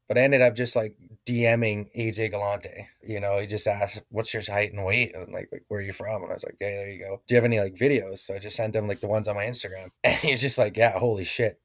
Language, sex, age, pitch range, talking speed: English, male, 20-39, 105-120 Hz, 305 wpm